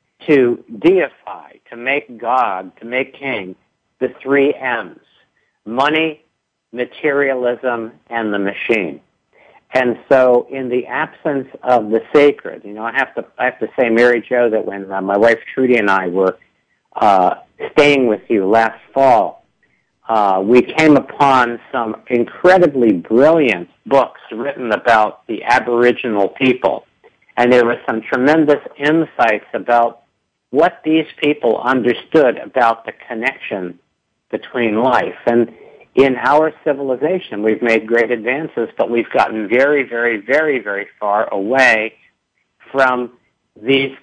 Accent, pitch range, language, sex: American, 115-135 Hz, English, male